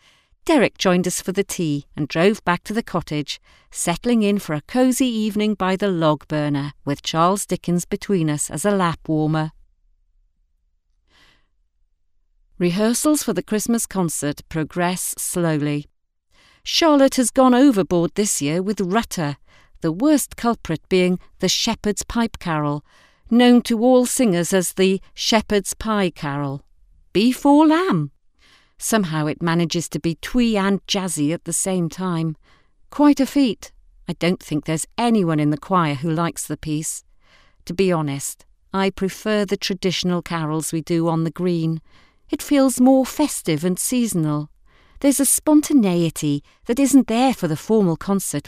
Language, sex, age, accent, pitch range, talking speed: English, female, 40-59, British, 155-225 Hz, 150 wpm